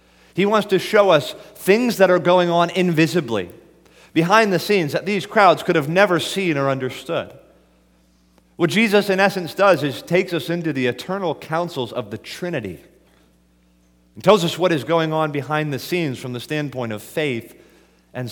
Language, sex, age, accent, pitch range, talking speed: English, male, 30-49, American, 110-170 Hz, 175 wpm